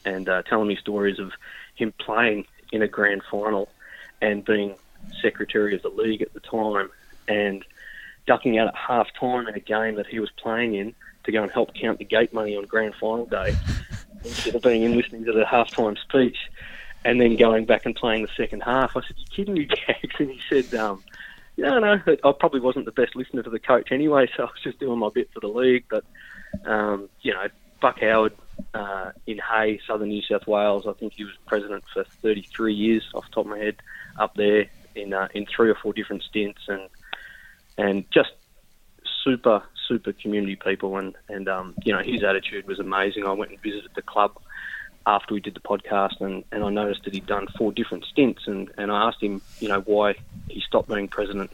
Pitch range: 100-115 Hz